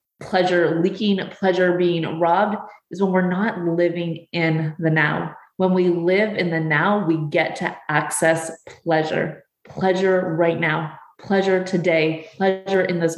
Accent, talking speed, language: American, 145 wpm, English